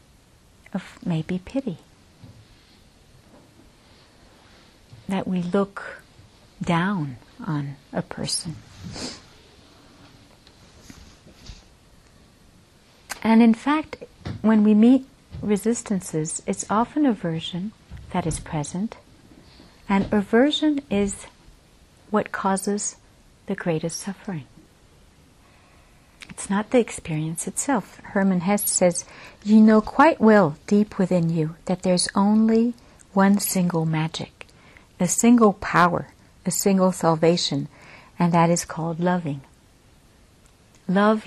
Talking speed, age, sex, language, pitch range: 95 wpm, 60-79, female, English, 170-220 Hz